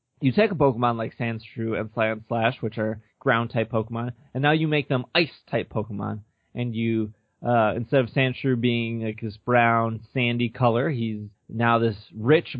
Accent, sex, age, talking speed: American, male, 20-39, 165 wpm